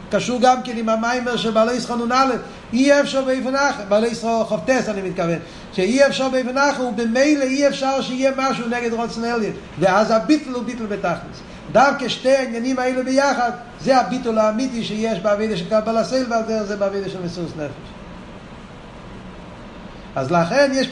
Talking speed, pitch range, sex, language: 150 wpm, 185-240 Hz, male, Hebrew